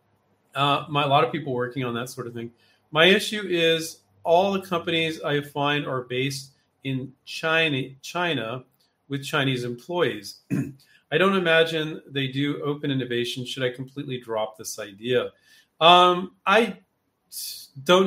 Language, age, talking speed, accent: English, 40-59, 145 wpm, American